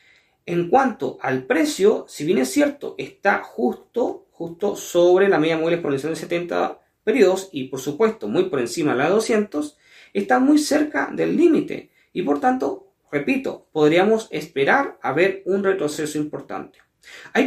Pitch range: 185-275 Hz